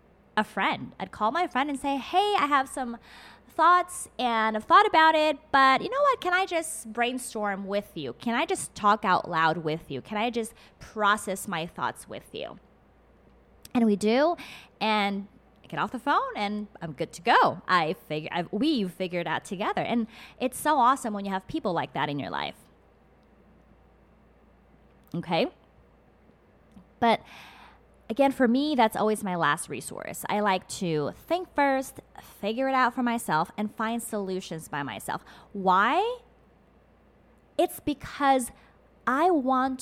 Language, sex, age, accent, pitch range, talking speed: English, female, 20-39, American, 195-265 Hz, 165 wpm